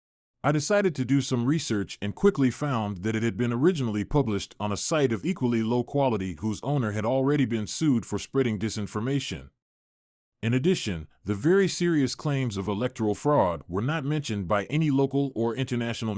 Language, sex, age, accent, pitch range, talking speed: English, male, 30-49, American, 105-145 Hz, 180 wpm